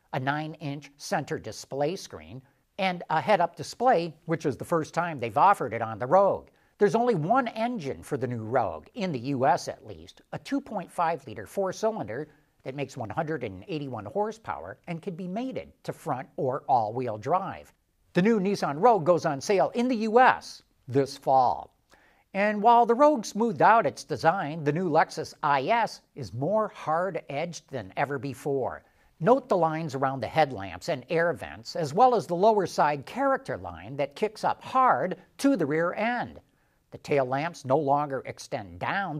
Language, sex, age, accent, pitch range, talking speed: English, male, 60-79, American, 135-205 Hz, 170 wpm